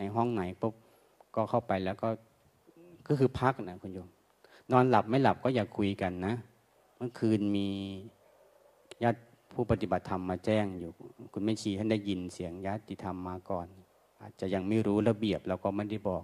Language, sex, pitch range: Thai, male, 95-110 Hz